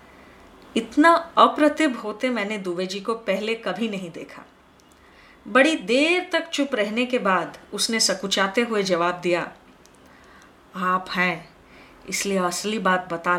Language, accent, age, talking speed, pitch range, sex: Hindi, native, 30-49, 130 wpm, 190-270 Hz, female